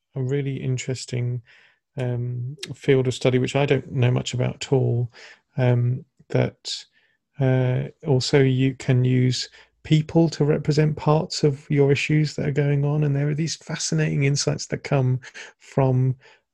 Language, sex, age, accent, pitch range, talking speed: English, male, 40-59, British, 125-140 Hz, 150 wpm